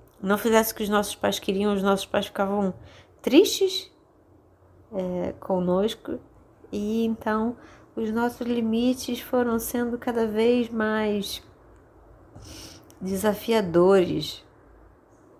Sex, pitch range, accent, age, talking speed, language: female, 185-245 Hz, Brazilian, 20-39, 95 wpm, Portuguese